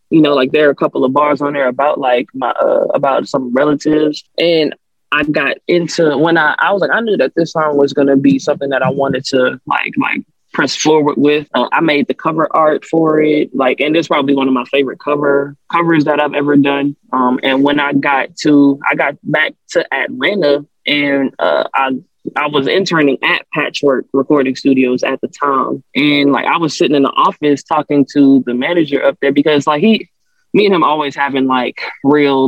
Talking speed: 210 wpm